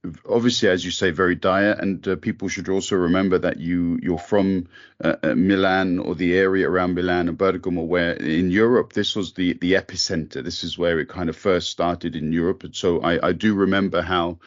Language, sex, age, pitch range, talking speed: English, male, 40-59, 90-110 Hz, 205 wpm